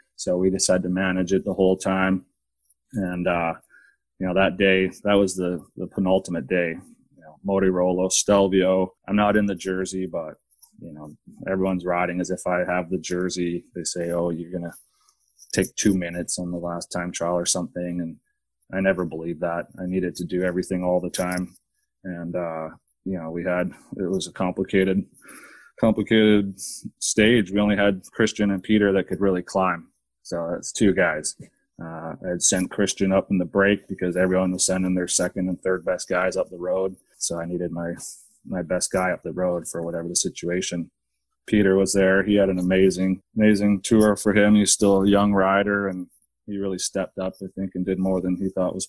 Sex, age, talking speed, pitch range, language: male, 20-39, 195 wpm, 90-100 Hz, English